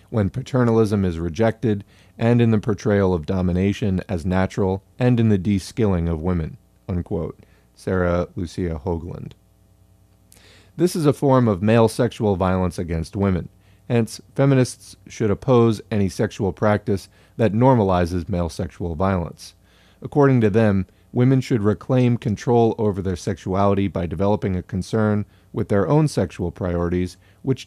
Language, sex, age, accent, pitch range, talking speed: English, male, 40-59, American, 95-115 Hz, 135 wpm